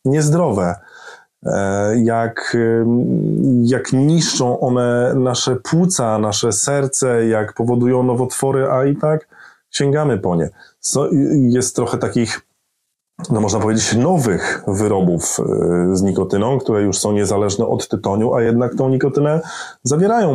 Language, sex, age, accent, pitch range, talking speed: Polish, male, 30-49, native, 100-135 Hz, 120 wpm